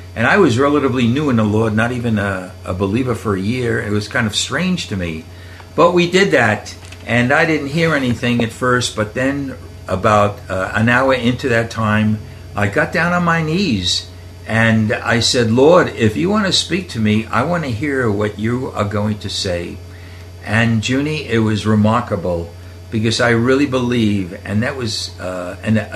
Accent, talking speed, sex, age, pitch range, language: American, 190 wpm, male, 60-79, 95-125 Hz, English